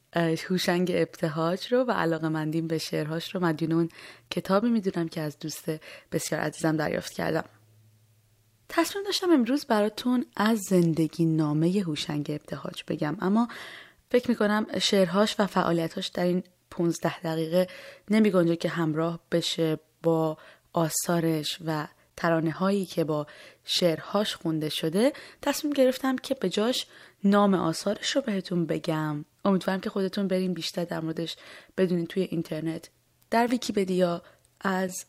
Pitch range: 160-205 Hz